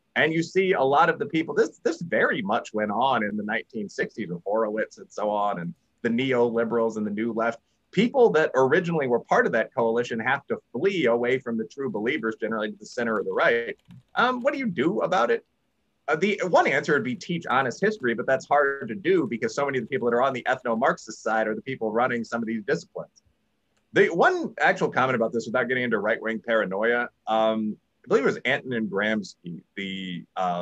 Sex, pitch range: male, 110-155 Hz